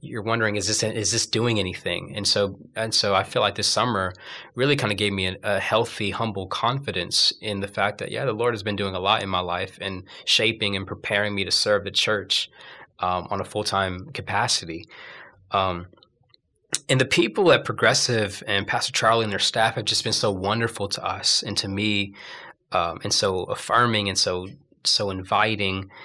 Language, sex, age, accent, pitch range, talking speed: English, male, 20-39, American, 100-115 Hz, 200 wpm